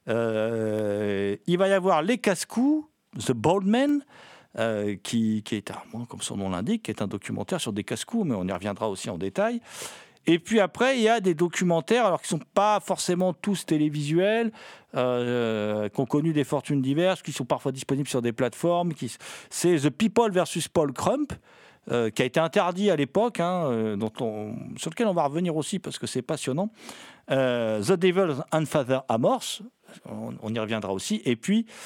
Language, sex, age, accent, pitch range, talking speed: French, male, 50-69, French, 115-180 Hz, 175 wpm